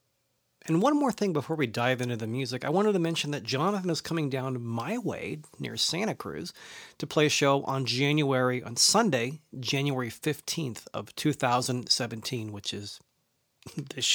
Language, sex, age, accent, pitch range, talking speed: English, male, 40-59, American, 125-155 Hz, 165 wpm